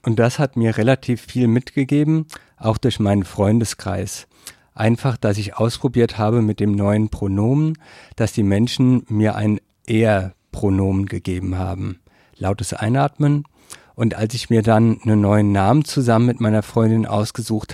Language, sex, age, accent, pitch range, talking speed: German, male, 50-69, German, 105-125 Hz, 145 wpm